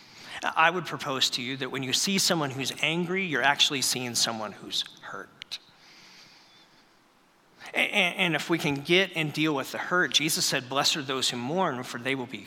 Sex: male